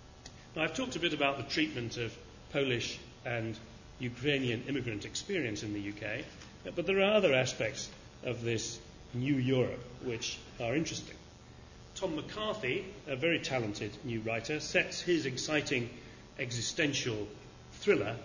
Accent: British